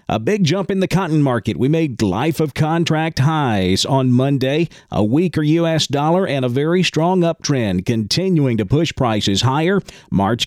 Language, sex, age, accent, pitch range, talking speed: English, male, 40-59, American, 125-160 Hz, 170 wpm